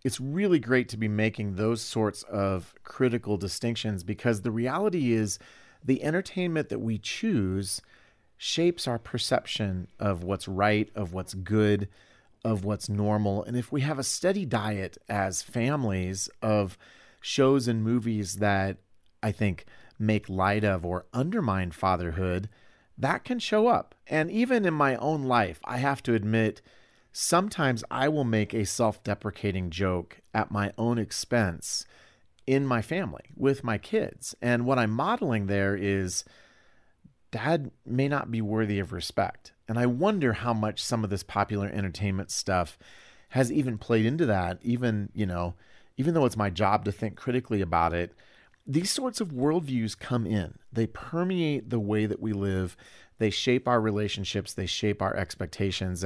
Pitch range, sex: 100-130 Hz, male